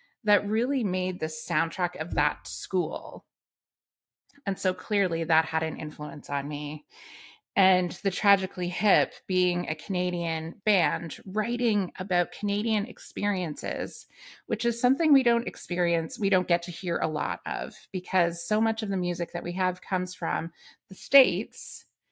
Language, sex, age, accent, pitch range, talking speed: English, female, 30-49, American, 170-205 Hz, 150 wpm